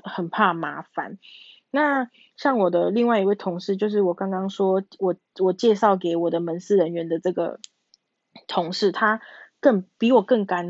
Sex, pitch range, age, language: female, 180-215 Hz, 20-39, Chinese